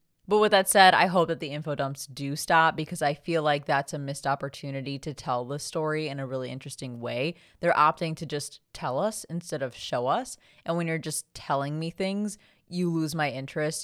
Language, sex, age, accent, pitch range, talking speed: English, female, 20-39, American, 135-165 Hz, 215 wpm